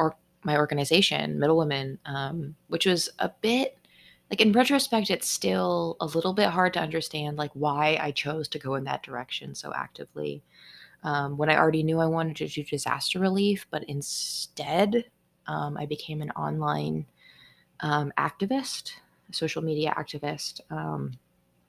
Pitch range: 145-165 Hz